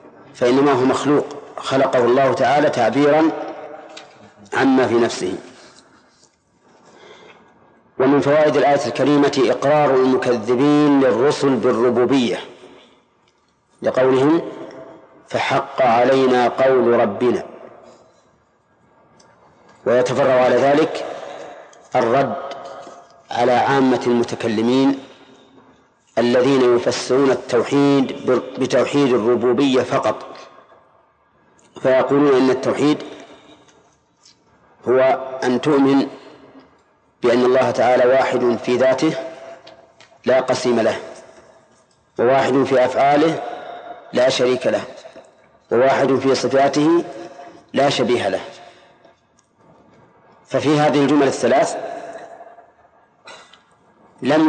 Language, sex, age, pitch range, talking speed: Arabic, male, 40-59, 125-140 Hz, 75 wpm